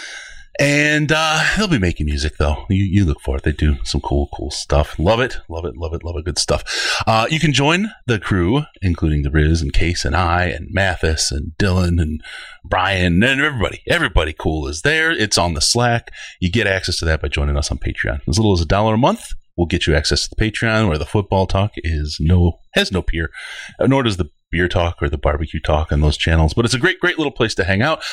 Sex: male